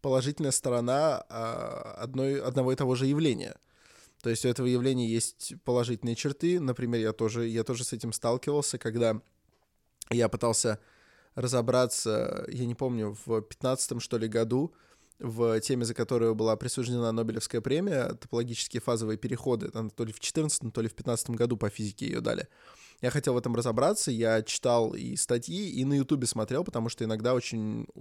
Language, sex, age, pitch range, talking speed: Russian, male, 20-39, 115-135 Hz, 160 wpm